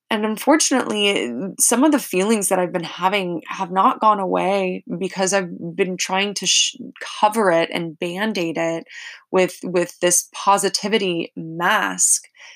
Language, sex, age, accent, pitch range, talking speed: English, female, 20-39, American, 170-210 Hz, 145 wpm